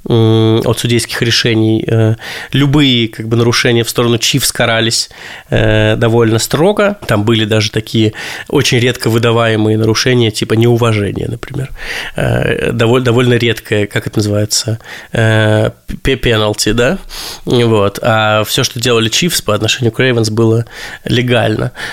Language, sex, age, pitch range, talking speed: Russian, male, 20-39, 115-130 Hz, 120 wpm